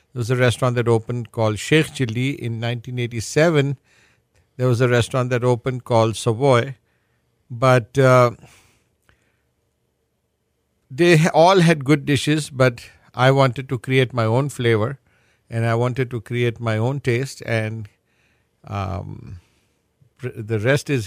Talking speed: 135 wpm